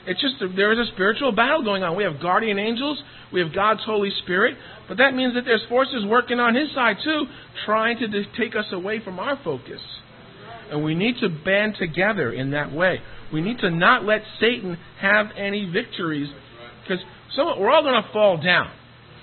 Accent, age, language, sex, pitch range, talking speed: American, 50-69, English, male, 170-235 Hz, 195 wpm